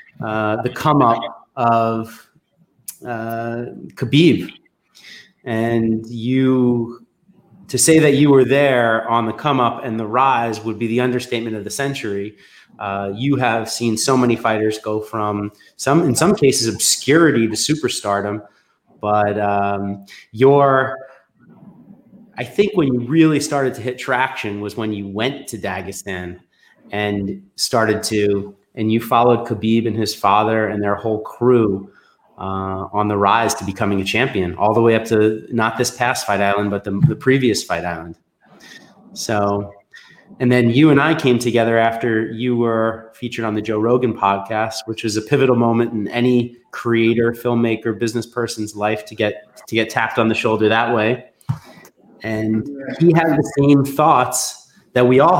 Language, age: English, 30-49